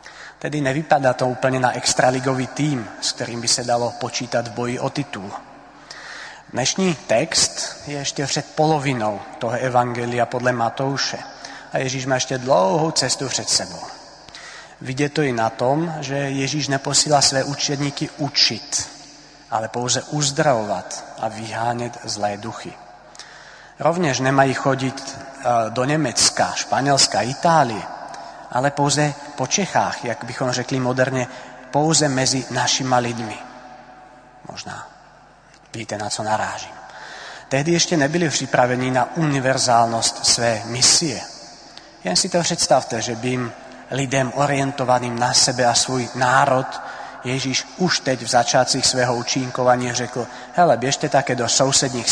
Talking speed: 130 wpm